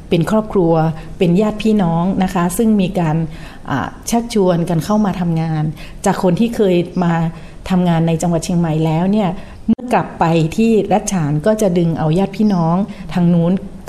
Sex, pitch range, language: female, 170-205 Hz, Thai